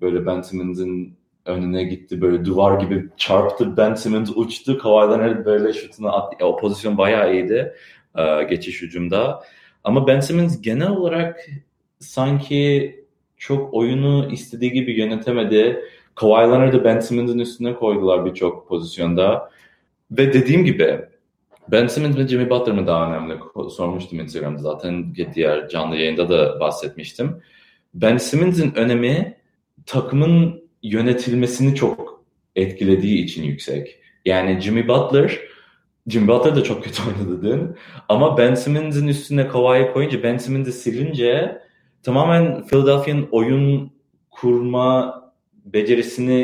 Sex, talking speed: male, 120 wpm